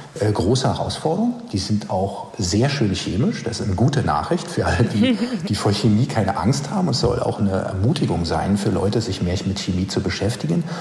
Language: German